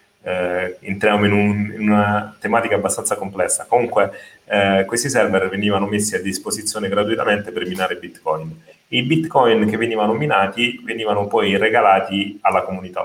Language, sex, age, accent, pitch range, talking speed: Italian, male, 30-49, native, 90-105 Hz, 130 wpm